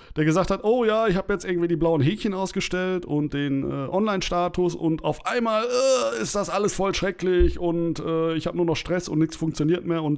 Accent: German